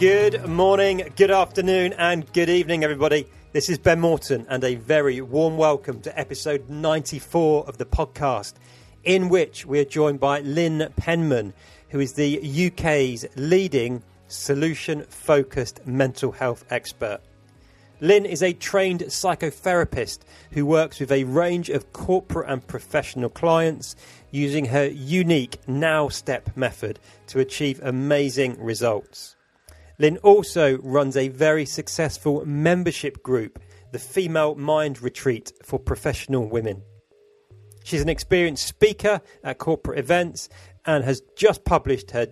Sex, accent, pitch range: male, British, 130-165 Hz